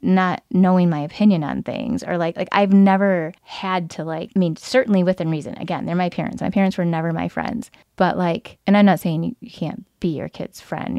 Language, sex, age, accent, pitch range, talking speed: English, female, 20-39, American, 160-190 Hz, 225 wpm